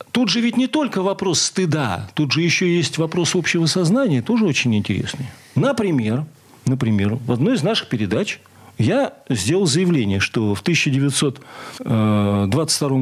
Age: 40-59